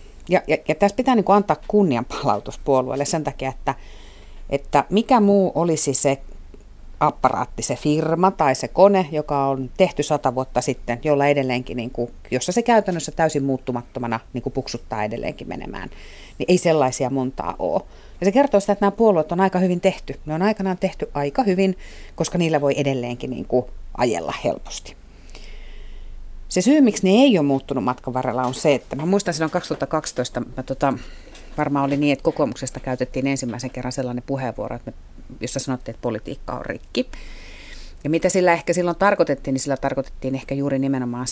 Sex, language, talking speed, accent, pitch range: female, Finnish, 175 wpm, native, 125-160 Hz